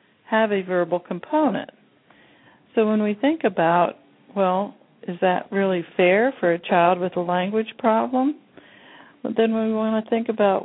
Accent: American